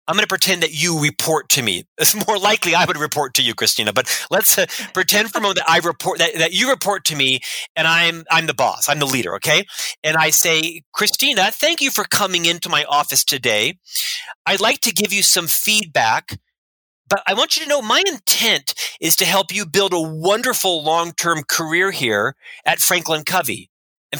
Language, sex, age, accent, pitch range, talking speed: English, male, 40-59, American, 160-205 Hz, 210 wpm